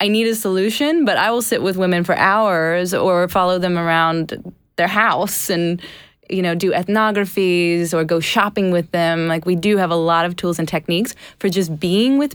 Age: 20-39